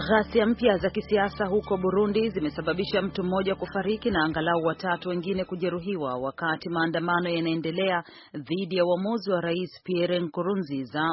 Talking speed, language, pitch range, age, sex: 135 wpm, Swahili, 160-195 Hz, 40-59, female